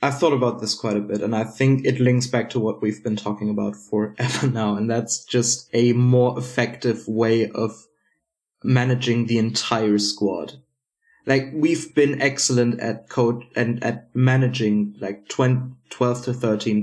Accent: German